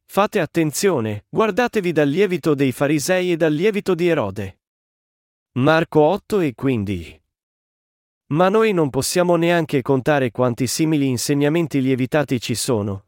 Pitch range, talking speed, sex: 125-165 Hz, 130 wpm, male